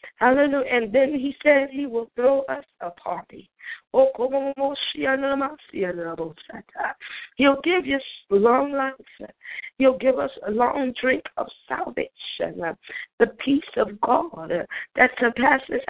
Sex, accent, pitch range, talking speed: female, American, 250-280 Hz, 110 wpm